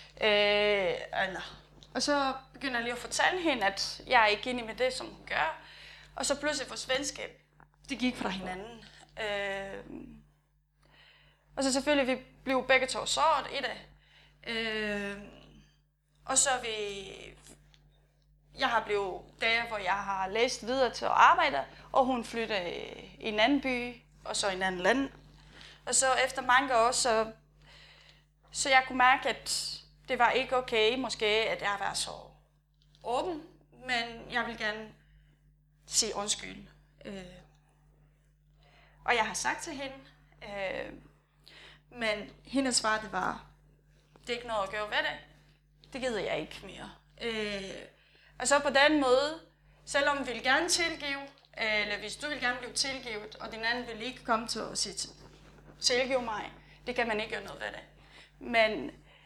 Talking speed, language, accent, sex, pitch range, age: 160 wpm, Danish, native, female, 185-255 Hz, 20-39